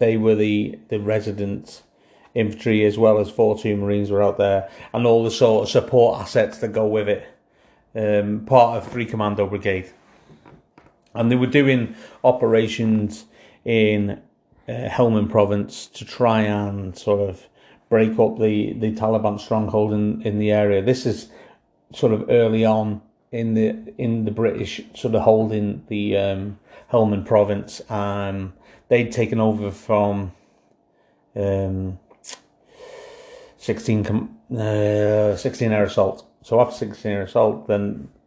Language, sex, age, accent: English, male, 30-49, British